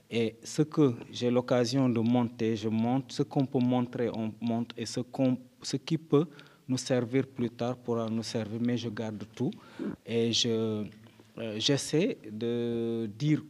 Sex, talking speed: male, 165 wpm